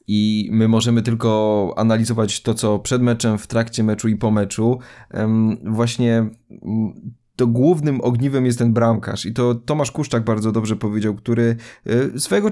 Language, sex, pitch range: Polish, male, 115-140 Hz